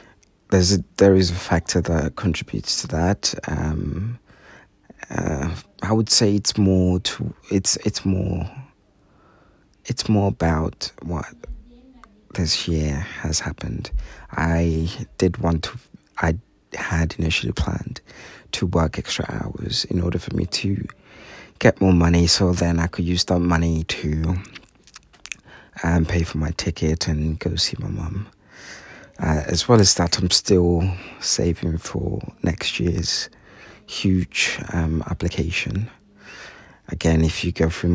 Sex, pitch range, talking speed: male, 80-100 Hz, 135 wpm